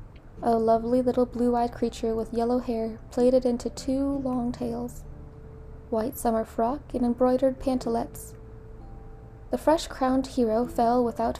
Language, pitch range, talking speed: English, 225-255 Hz, 135 wpm